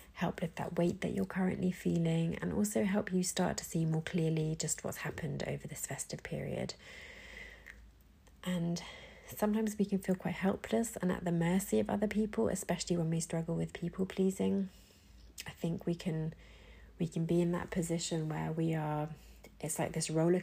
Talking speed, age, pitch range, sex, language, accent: 180 wpm, 30-49, 155-175 Hz, female, English, British